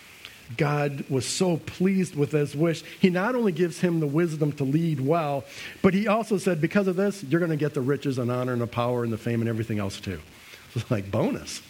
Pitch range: 145-200 Hz